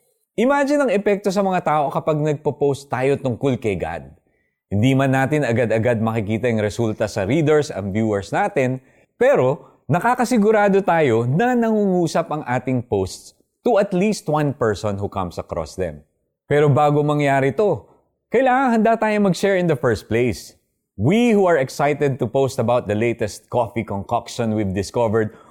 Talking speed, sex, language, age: 155 wpm, male, Filipino, 20-39